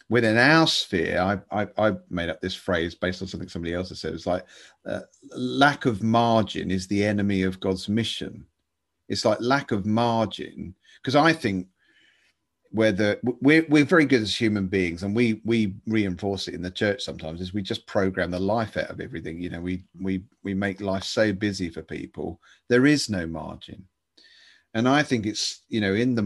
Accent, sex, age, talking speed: British, male, 40-59, 200 wpm